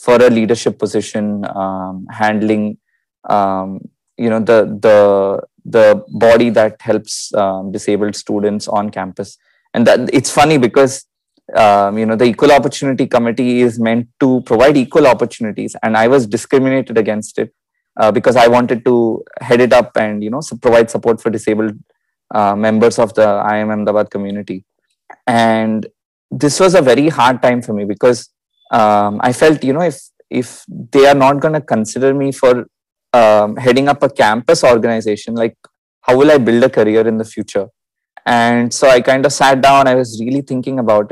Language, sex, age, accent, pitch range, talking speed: English, male, 20-39, Indian, 105-130 Hz, 175 wpm